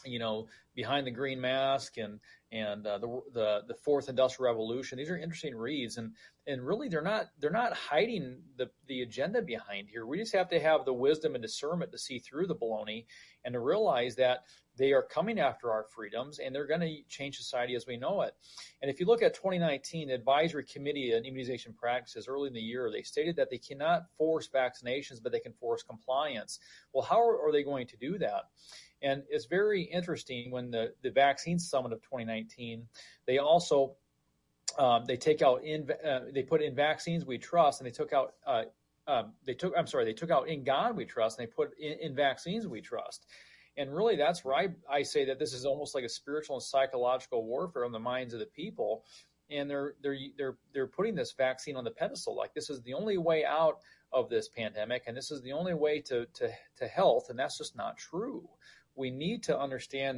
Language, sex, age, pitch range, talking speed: English, male, 40-59, 125-155 Hz, 215 wpm